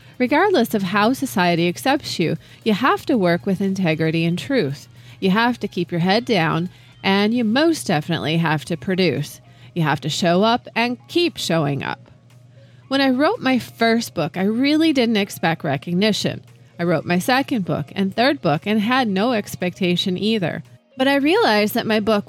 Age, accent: 30-49, American